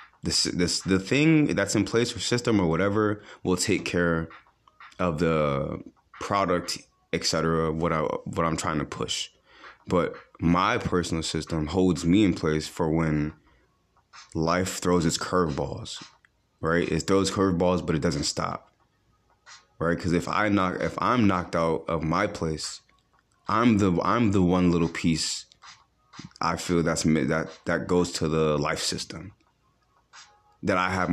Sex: male